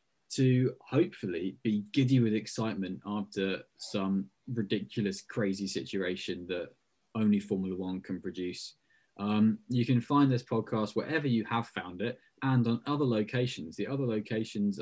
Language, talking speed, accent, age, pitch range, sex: English, 140 wpm, British, 20-39, 110-130 Hz, male